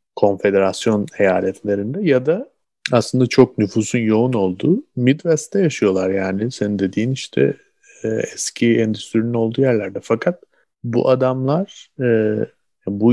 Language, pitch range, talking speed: Turkish, 100-120 Hz, 105 wpm